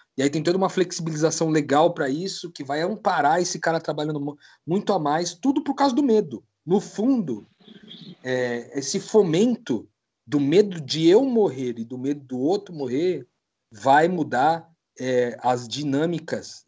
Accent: Brazilian